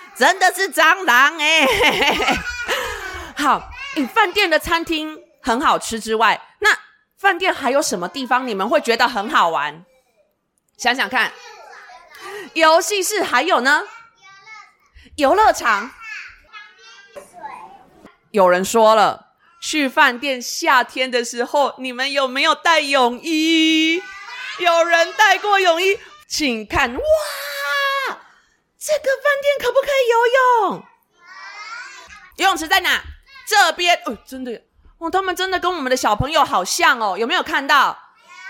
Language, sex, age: Chinese, female, 20-39